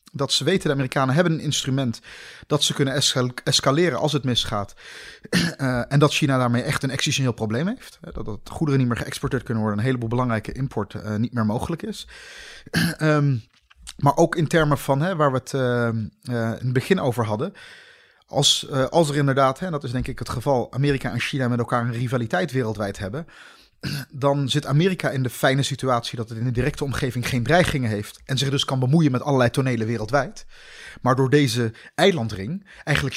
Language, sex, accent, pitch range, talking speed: Dutch, male, Dutch, 120-155 Hz, 200 wpm